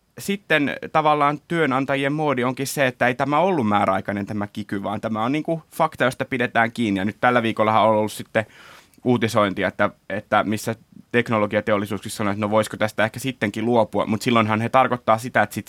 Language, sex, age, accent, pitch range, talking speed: Finnish, male, 20-39, native, 100-125 Hz, 185 wpm